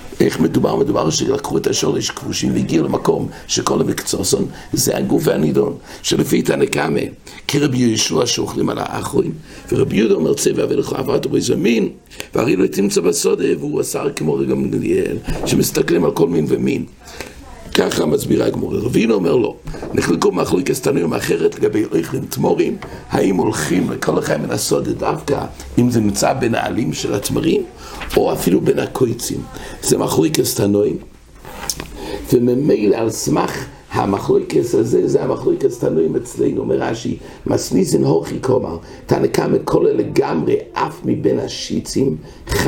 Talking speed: 120 wpm